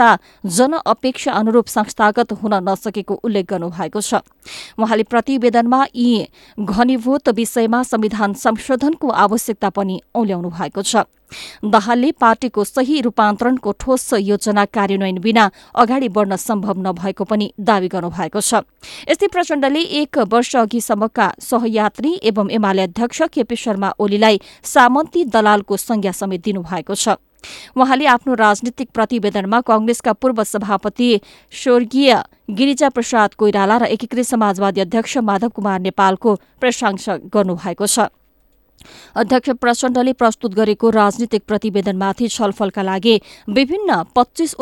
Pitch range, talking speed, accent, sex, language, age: 205-245 Hz, 105 wpm, Indian, female, English, 20-39